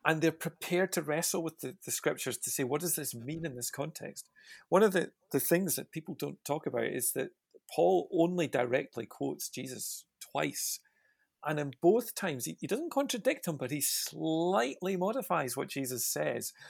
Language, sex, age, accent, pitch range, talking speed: English, male, 40-59, British, 125-170 Hz, 185 wpm